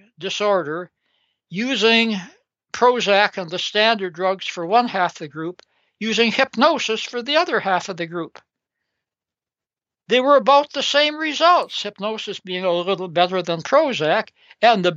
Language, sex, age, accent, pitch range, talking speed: English, male, 60-79, American, 185-250 Hz, 145 wpm